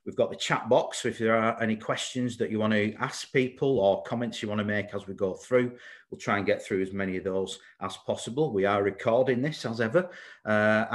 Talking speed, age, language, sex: 245 wpm, 40-59, English, male